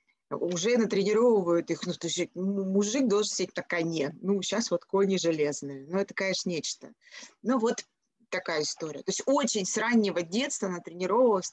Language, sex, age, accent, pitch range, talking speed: Russian, female, 30-49, native, 175-225 Hz, 160 wpm